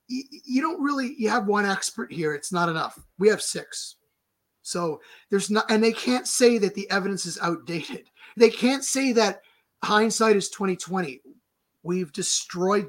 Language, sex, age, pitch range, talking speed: English, male, 30-49, 155-200 Hz, 165 wpm